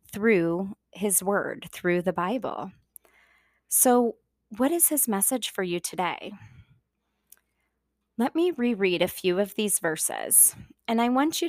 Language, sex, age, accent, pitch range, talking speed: English, female, 20-39, American, 170-215 Hz, 135 wpm